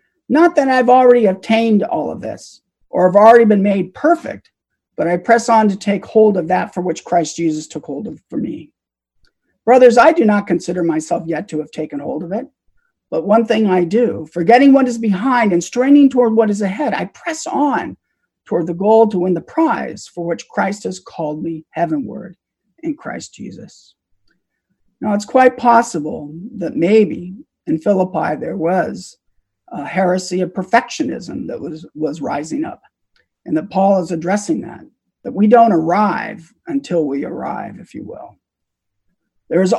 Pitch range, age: 170-250 Hz, 50-69